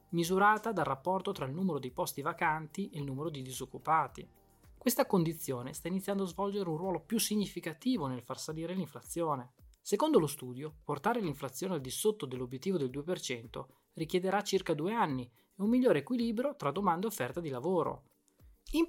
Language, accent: Italian, native